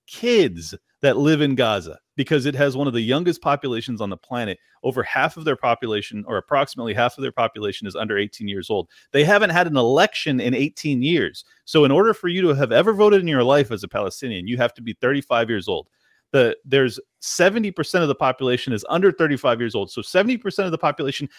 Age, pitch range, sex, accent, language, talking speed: 30-49, 135-195 Hz, male, American, English, 220 wpm